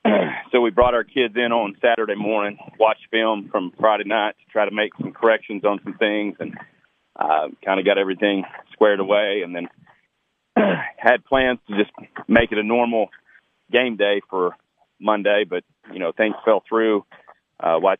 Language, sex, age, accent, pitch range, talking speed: English, male, 40-59, American, 100-115 Hz, 175 wpm